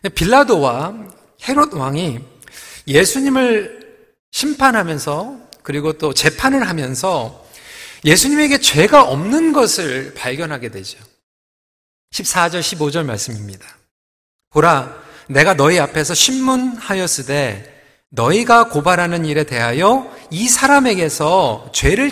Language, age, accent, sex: Korean, 40-59, native, male